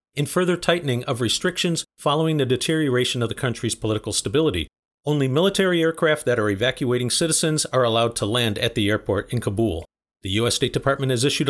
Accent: American